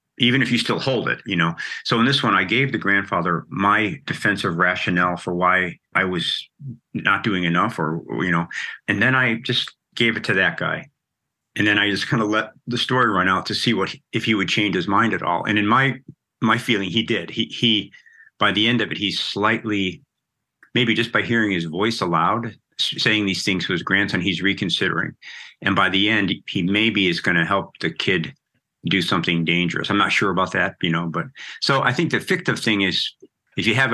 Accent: American